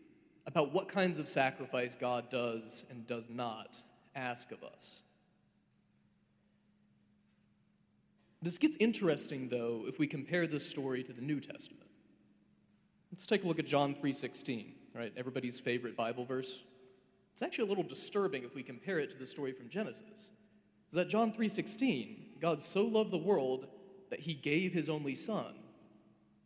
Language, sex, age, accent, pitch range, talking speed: English, male, 30-49, American, 130-200 Hz, 150 wpm